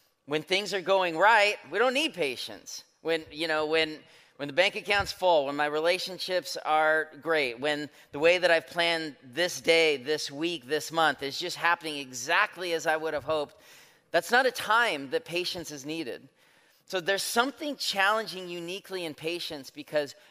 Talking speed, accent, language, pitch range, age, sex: 175 wpm, American, English, 155-195 Hz, 30-49, male